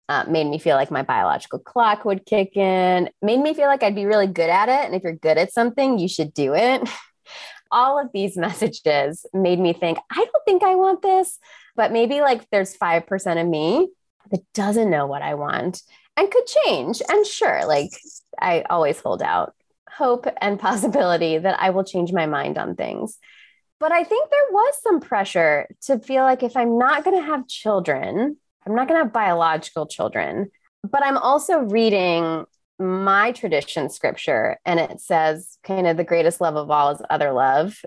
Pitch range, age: 170-265 Hz, 20-39